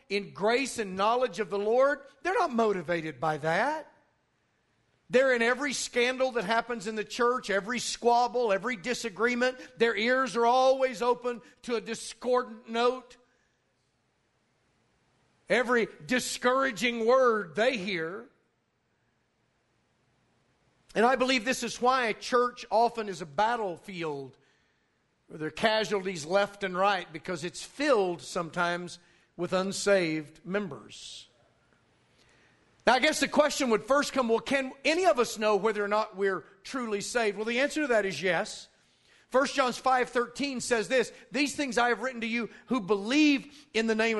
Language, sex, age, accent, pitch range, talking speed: English, male, 50-69, American, 200-250 Hz, 150 wpm